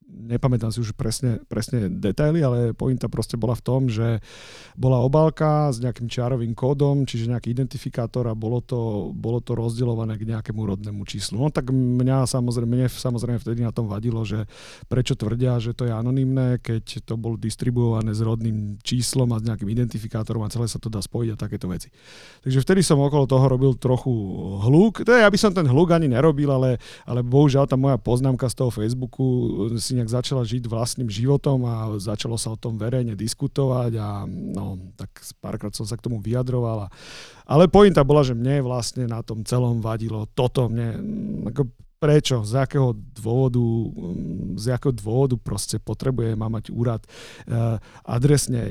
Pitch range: 115-130 Hz